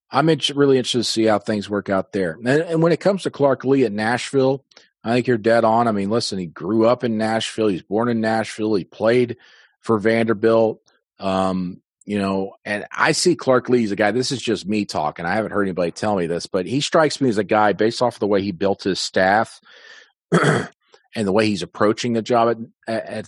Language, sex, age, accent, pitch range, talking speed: English, male, 40-59, American, 100-120 Hz, 235 wpm